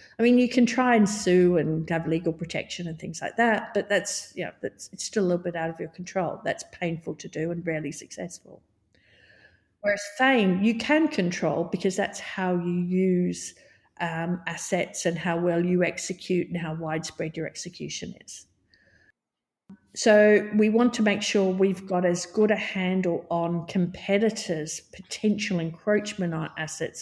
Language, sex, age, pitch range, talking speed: English, female, 50-69, 170-215 Hz, 170 wpm